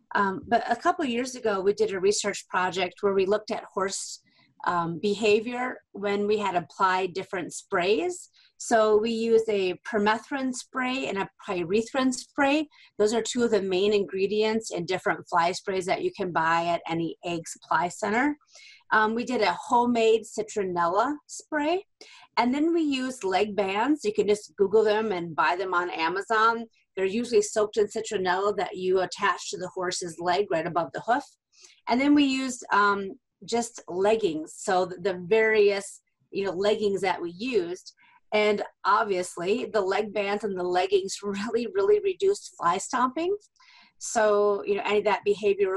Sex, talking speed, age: female, 170 wpm, 30-49